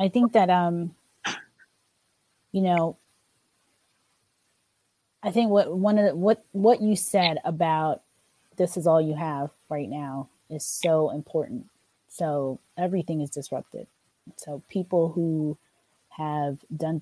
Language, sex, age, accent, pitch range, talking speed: English, female, 30-49, American, 145-180 Hz, 125 wpm